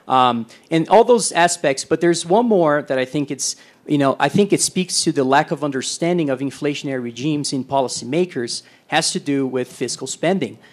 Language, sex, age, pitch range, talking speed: English, male, 30-49, 135-180 Hz, 195 wpm